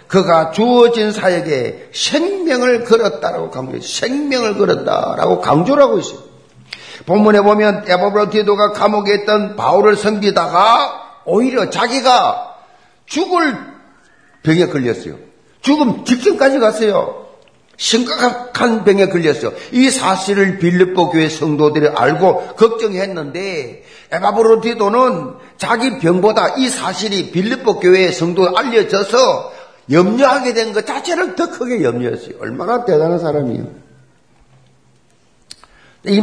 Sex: male